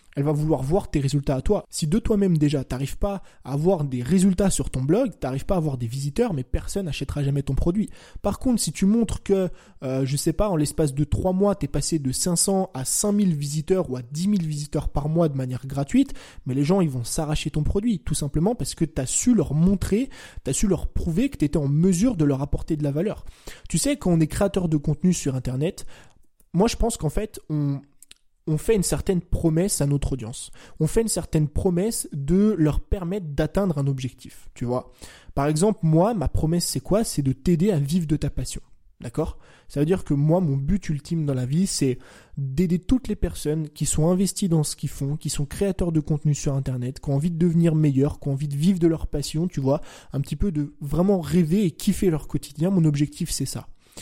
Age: 20-39